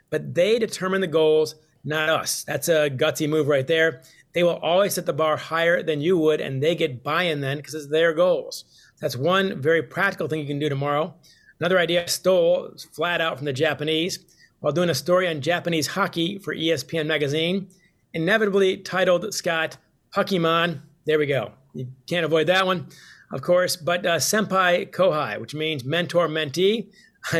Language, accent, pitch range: English, American, 150-180 Hz